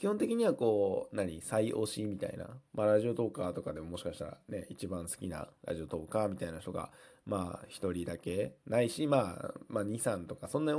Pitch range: 95-140 Hz